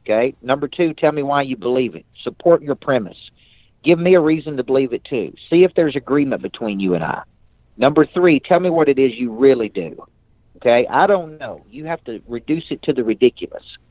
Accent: American